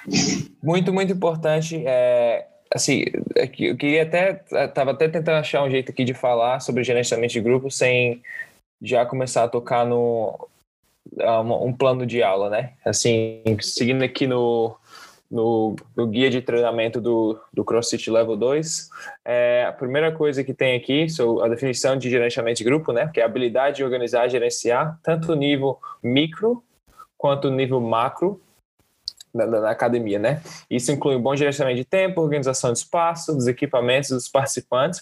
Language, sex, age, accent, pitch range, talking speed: Portuguese, male, 10-29, Brazilian, 120-150 Hz, 160 wpm